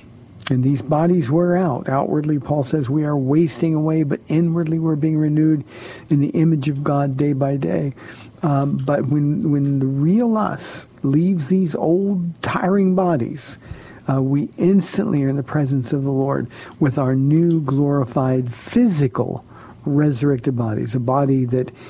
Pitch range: 130-165 Hz